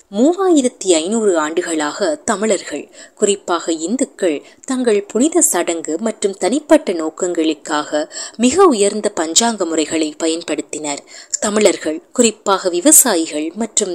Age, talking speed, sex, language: 20-39, 90 wpm, female, Tamil